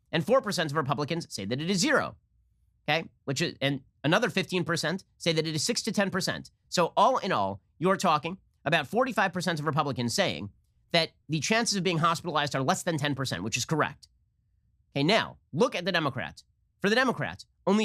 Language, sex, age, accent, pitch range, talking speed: English, male, 40-59, American, 130-195 Hz, 190 wpm